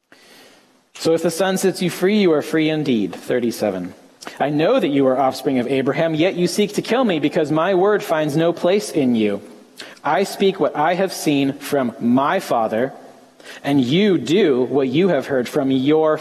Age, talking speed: 30-49, 195 wpm